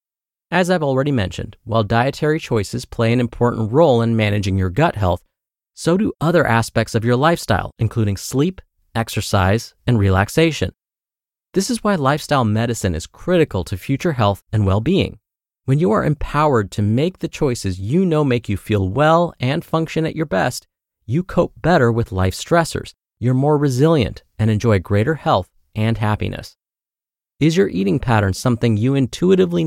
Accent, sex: American, male